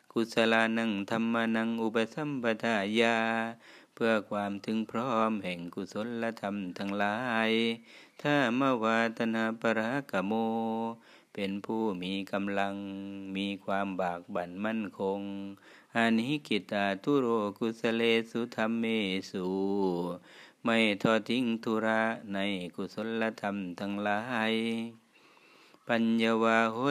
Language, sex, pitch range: Thai, male, 100-115 Hz